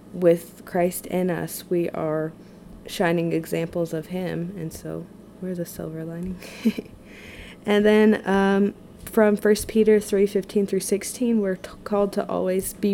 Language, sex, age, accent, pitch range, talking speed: English, female, 20-39, American, 175-200 Hz, 145 wpm